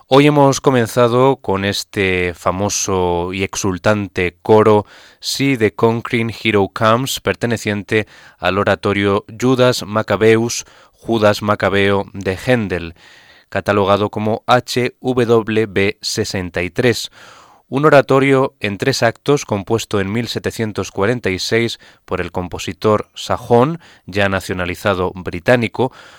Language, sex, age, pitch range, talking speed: Spanish, male, 20-39, 100-125 Hz, 95 wpm